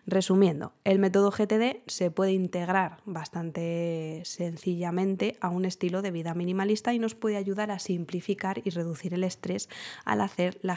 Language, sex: Spanish, female